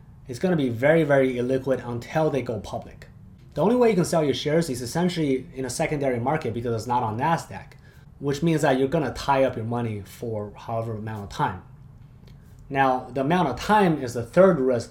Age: 20-39